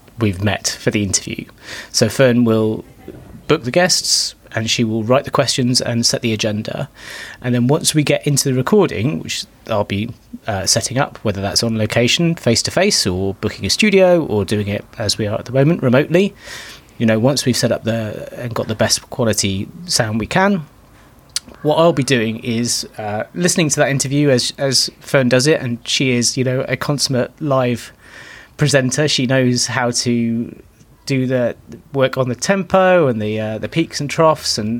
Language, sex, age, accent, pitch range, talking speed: English, male, 30-49, British, 115-145 Hz, 190 wpm